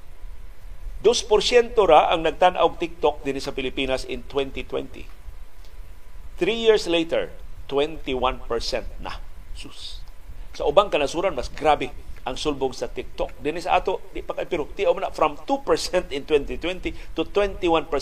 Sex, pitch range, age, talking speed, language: male, 115-175 Hz, 50-69, 115 wpm, Filipino